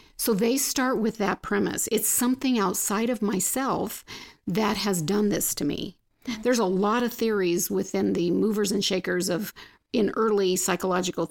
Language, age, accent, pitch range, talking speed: English, 50-69, American, 190-230 Hz, 165 wpm